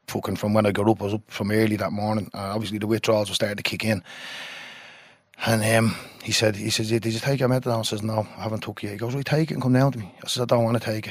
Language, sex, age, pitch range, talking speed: English, male, 20-39, 110-130 Hz, 320 wpm